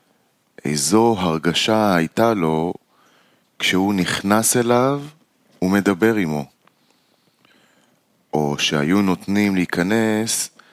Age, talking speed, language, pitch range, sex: 30-49, 75 wpm, Hebrew, 85-110 Hz, male